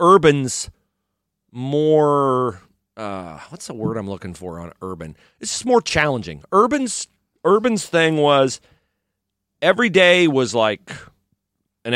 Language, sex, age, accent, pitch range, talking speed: English, male, 40-59, American, 115-160 Hz, 115 wpm